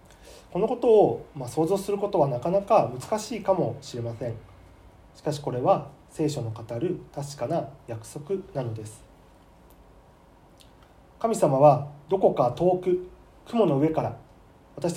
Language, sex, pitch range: Japanese, male, 115-155 Hz